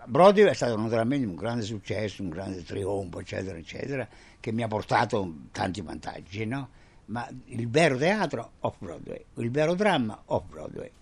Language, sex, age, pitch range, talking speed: Italian, male, 60-79, 105-155 Hz, 150 wpm